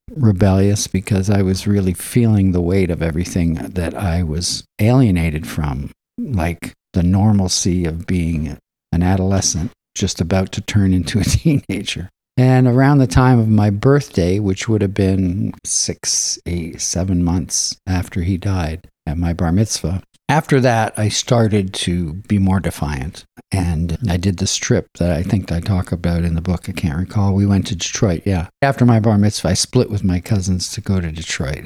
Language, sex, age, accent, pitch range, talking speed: English, male, 50-69, American, 90-110 Hz, 180 wpm